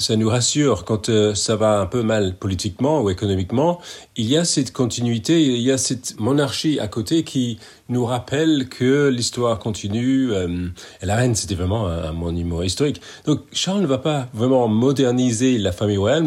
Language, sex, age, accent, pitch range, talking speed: French, male, 40-59, French, 105-135 Hz, 190 wpm